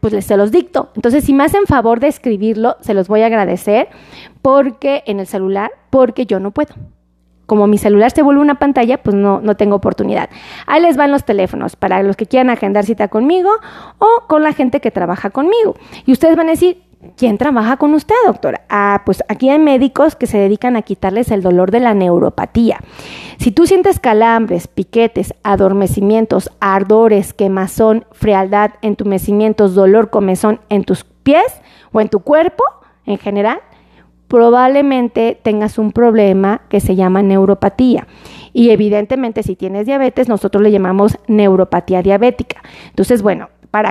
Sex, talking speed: female, 170 wpm